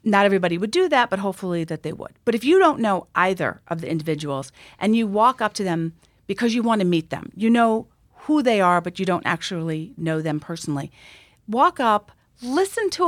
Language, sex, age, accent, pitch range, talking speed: English, female, 40-59, American, 170-240 Hz, 215 wpm